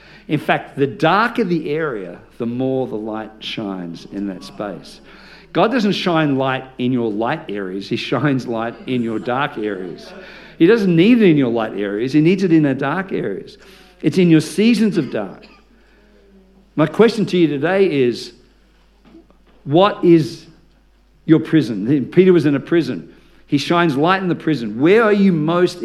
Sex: male